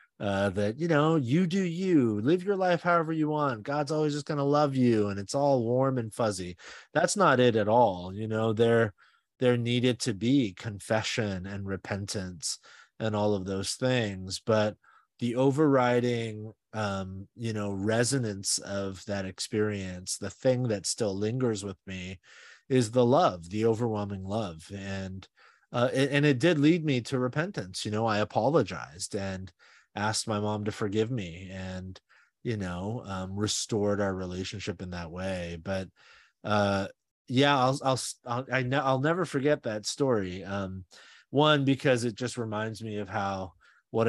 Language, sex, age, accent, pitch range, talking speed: English, male, 30-49, American, 100-125 Hz, 165 wpm